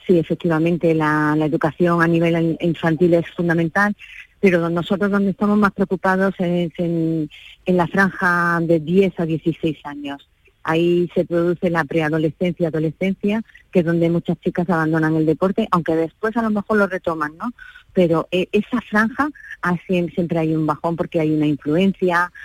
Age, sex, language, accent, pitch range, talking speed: 30-49, female, Spanish, Spanish, 165-190 Hz, 160 wpm